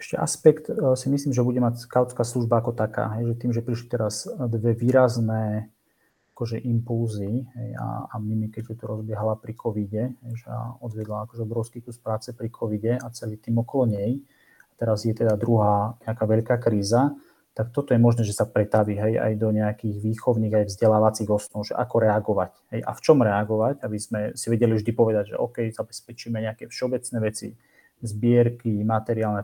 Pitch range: 110-120 Hz